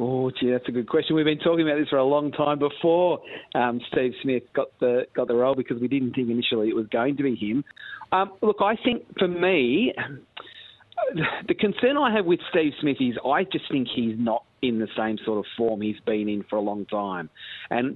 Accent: Australian